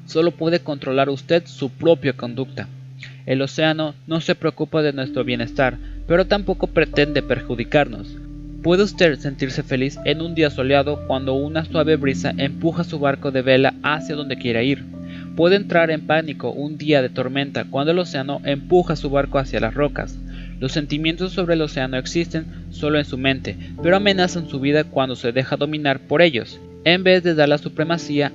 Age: 20-39